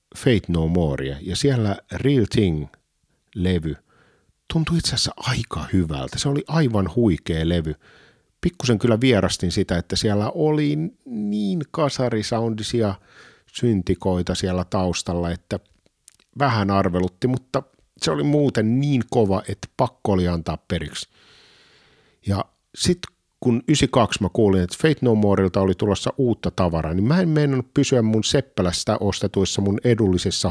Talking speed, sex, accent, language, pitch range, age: 130 wpm, male, native, Finnish, 90-125 Hz, 50-69